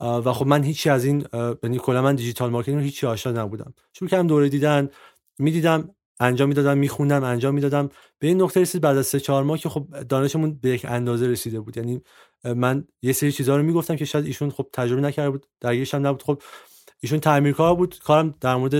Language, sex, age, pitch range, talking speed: Persian, male, 30-49, 125-155 Hz, 210 wpm